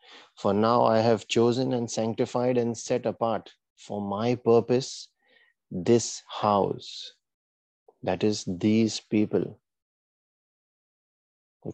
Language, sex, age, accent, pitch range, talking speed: English, male, 30-49, Indian, 100-115 Hz, 100 wpm